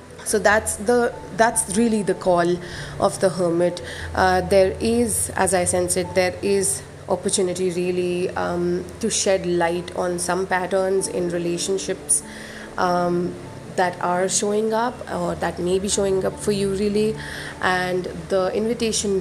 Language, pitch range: English, 175-195 Hz